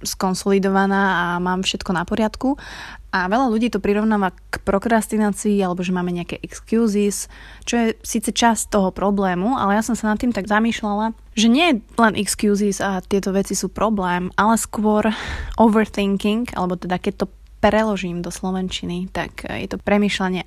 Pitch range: 180-210 Hz